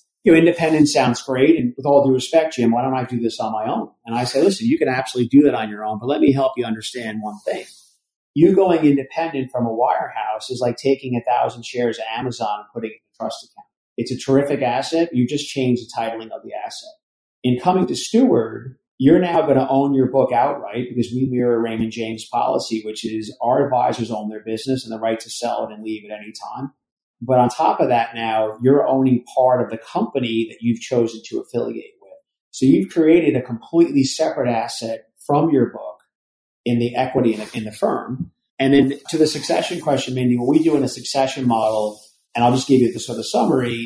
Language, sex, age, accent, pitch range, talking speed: English, male, 40-59, American, 115-140 Hz, 230 wpm